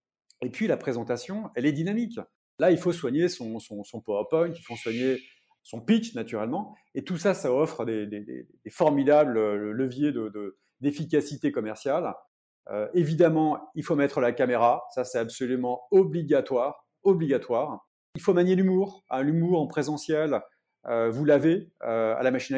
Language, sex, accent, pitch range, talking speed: French, male, French, 120-155 Hz, 155 wpm